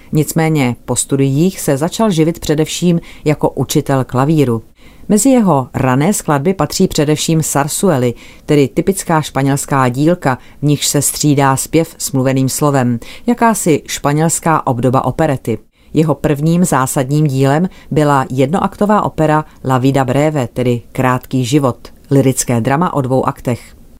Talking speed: 130 wpm